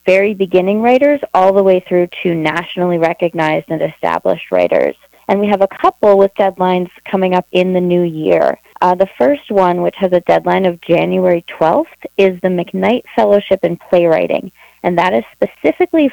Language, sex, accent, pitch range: English, female, American, 175-205 Hz